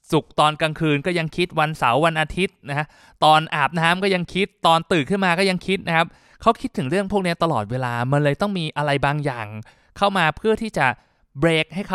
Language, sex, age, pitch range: Thai, male, 20-39, 130-175 Hz